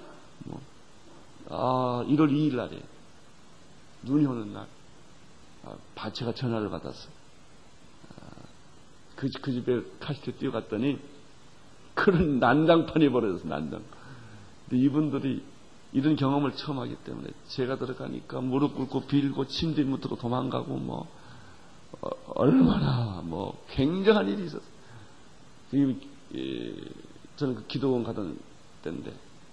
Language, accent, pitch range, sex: Korean, native, 115-145 Hz, male